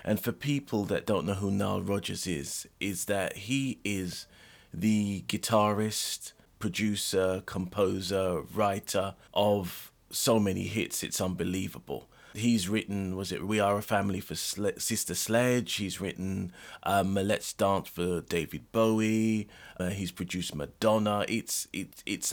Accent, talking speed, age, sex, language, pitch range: British, 135 wpm, 30-49, male, English, 95-120 Hz